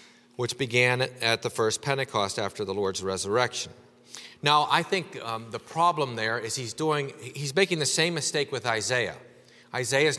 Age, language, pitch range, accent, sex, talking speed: 40-59, English, 110-140 Hz, American, male, 165 wpm